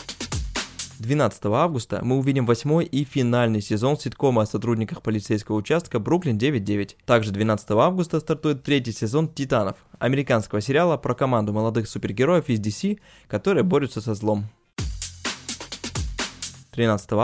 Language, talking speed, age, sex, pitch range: Russian, 120 wpm, 20-39, male, 110-145 Hz